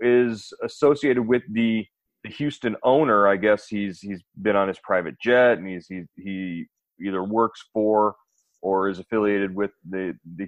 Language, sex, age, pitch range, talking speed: English, male, 30-49, 100-115 Hz, 165 wpm